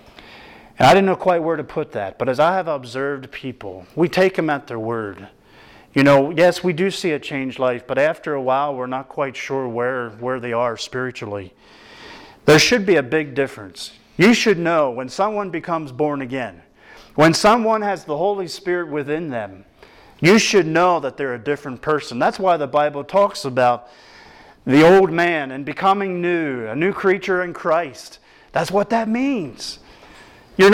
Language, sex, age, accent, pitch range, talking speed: English, male, 40-59, American, 135-185 Hz, 185 wpm